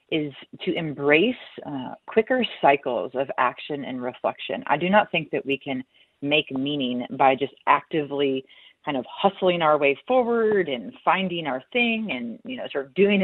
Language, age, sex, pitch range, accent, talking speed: English, 30-49, female, 135-170 Hz, American, 170 wpm